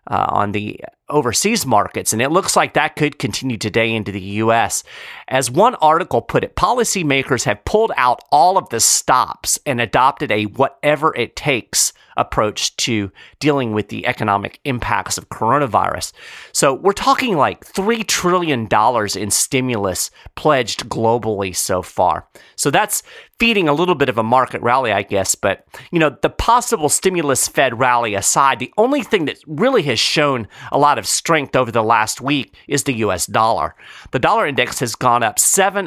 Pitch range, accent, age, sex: 110-165 Hz, American, 40-59, male